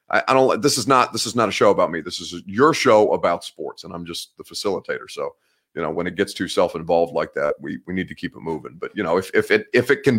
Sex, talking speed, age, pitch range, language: male, 290 wpm, 30-49, 105-135 Hz, English